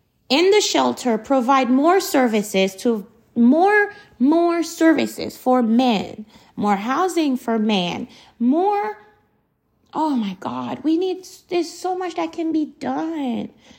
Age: 30-49